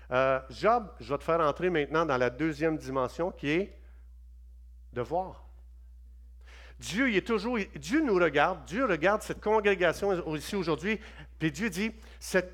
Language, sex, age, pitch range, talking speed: French, male, 50-69, 125-205 Hz, 160 wpm